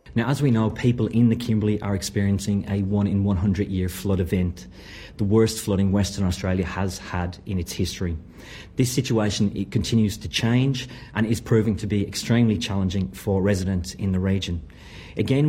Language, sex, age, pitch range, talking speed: Italian, male, 40-59, 100-140 Hz, 165 wpm